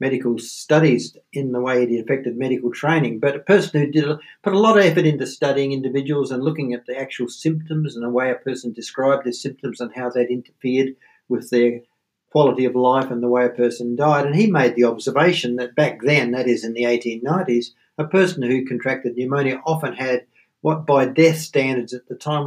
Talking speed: 210 wpm